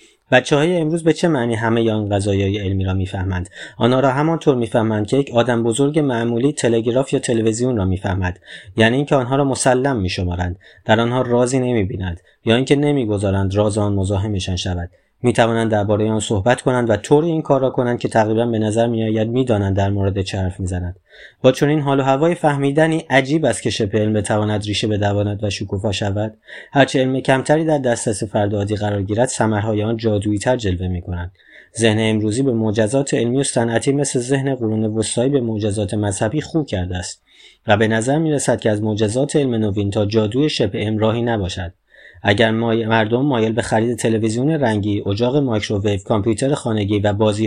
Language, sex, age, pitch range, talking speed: Persian, male, 30-49, 105-125 Hz, 170 wpm